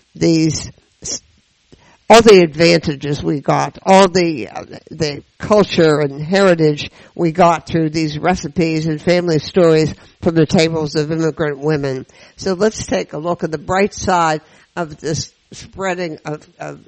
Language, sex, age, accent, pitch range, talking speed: English, female, 60-79, American, 155-185 Hz, 140 wpm